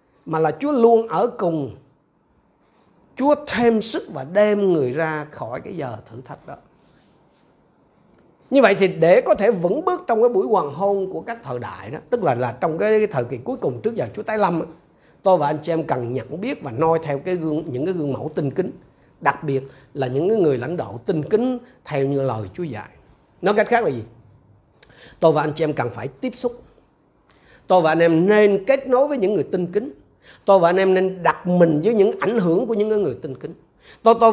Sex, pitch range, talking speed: male, 155-235 Hz, 225 wpm